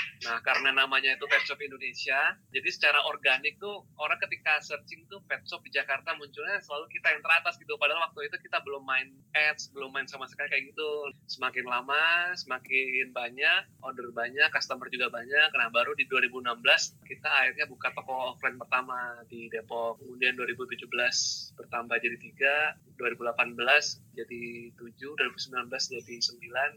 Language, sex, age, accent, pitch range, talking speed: Indonesian, male, 20-39, native, 125-150 Hz, 150 wpm